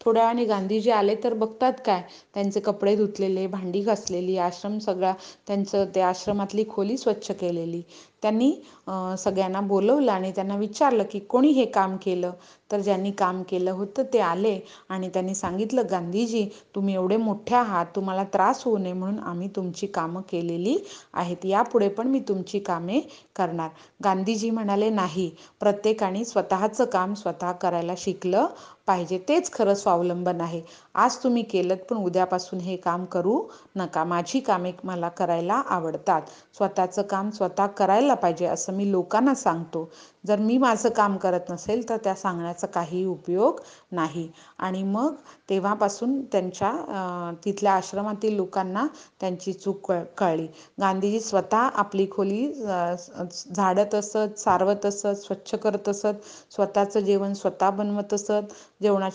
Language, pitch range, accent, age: Hindi, 185-210 Hz, native, 30-49